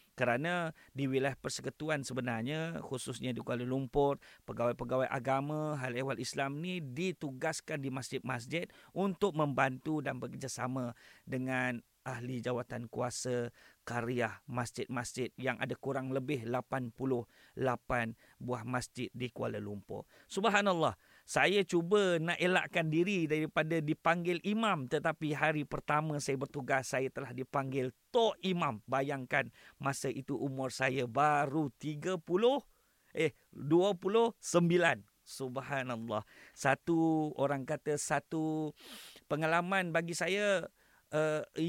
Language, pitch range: Malay, 130-170 Hz